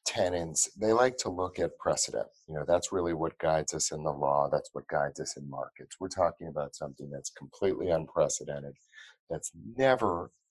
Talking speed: 185 wpm